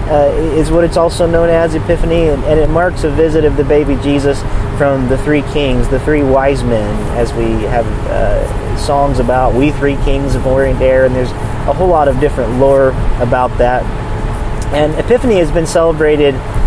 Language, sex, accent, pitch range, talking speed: English, male, American, 125-155 Hz, 195 wpm